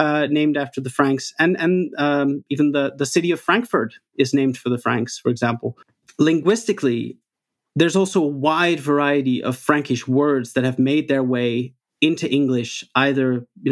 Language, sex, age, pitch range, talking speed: English, male, 30-49, 120-150 Hz, 170 wpm